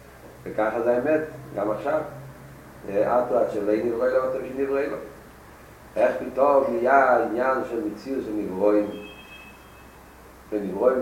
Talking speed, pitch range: 115 wpm, 105-155 Hz